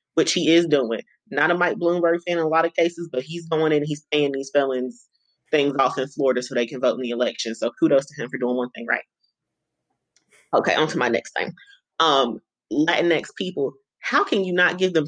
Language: English